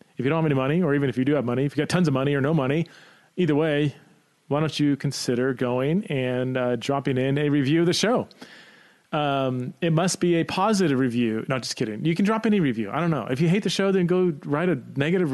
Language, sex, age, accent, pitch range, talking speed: English, male, 30-49, American, 130-170 Hz, 260 wpm